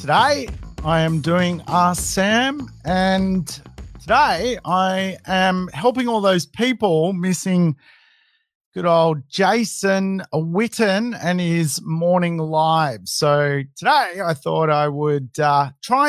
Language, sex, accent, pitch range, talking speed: English, male, Australian, 145-195 Hz, 115 wpm